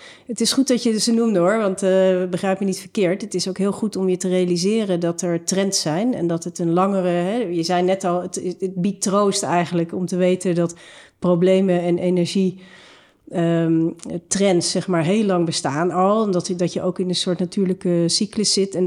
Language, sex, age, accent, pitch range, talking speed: Dutch, female, 40-59, Dutch, 175-205 Hz, 195 wpm